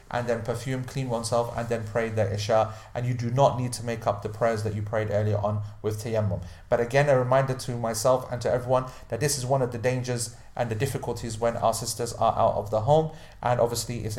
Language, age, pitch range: English, 30-49, 110-140 Hz